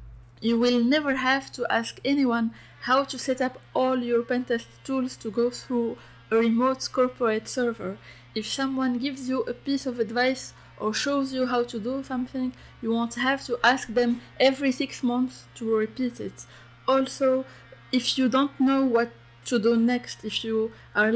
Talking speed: 175 wpm